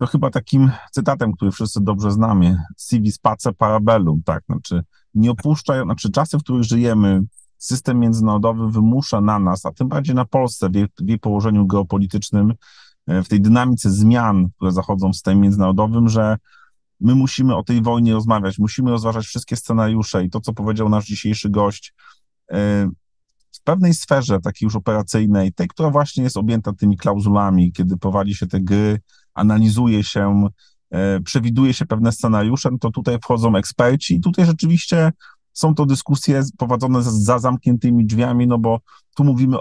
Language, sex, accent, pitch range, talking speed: Polish, male, native, 105-125 Hz, 160 wpm